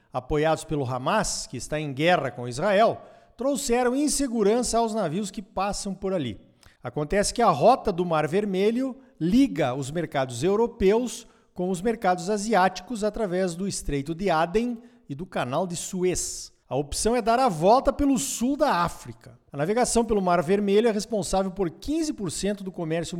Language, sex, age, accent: Portuguese, male, 50-69, Brazilian